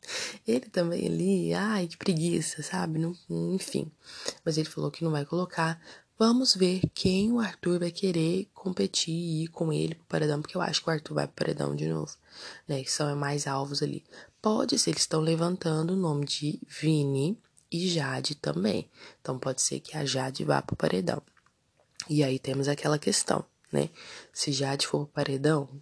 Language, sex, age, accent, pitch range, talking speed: Portuguese, female, 20-39, Brazilian, 145-175 Hz, 190 wpm